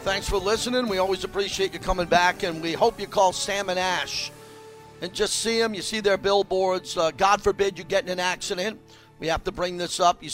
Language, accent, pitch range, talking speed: English, American, 155-195 Hz, 230 wpm